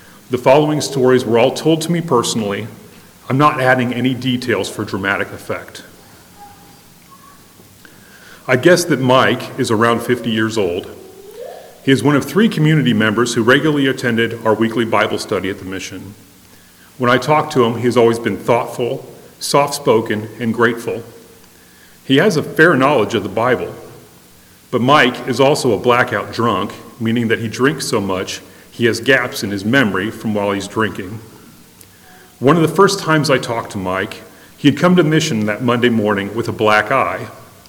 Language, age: English, 40-59